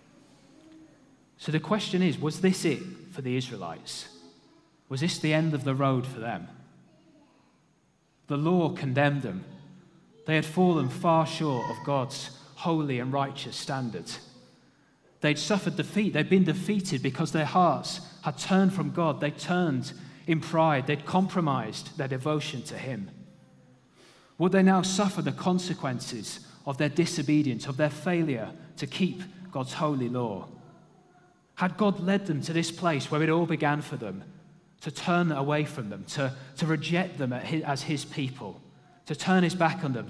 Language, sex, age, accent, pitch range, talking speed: English, male, 30-49, British, 140-175 Hz, 160 wpm